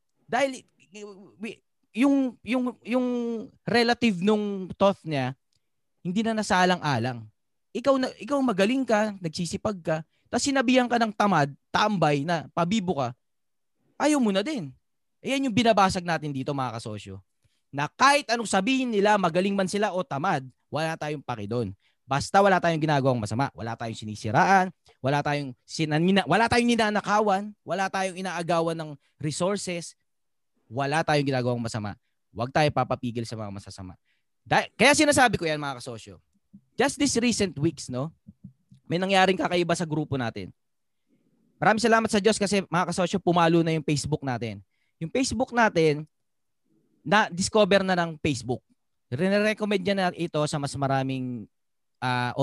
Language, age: Filipino, 20-39